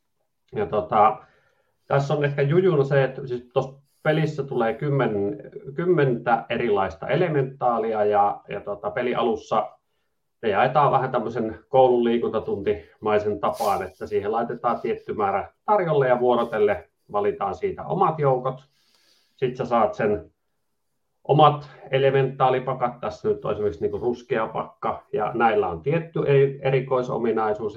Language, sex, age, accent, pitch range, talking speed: Finnish, male, 30-49, native, 115-150 Hz, 120 wpm